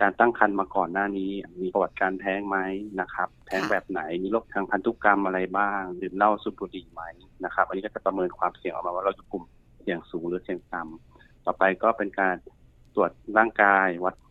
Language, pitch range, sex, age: Thai, 90-105 Hz, male, 30-49